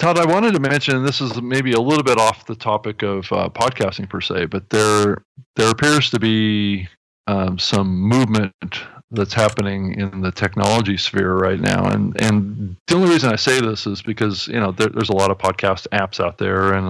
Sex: male